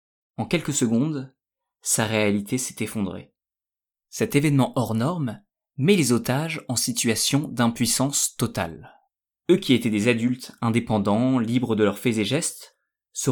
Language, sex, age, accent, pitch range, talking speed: French, male, 20-39, French, 110-135 Hz, 140 wpm